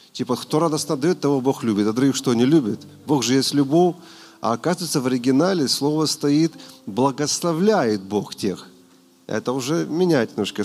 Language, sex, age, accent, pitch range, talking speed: Russian, male, 40-59, native, 105-160 Hz, 165 wpm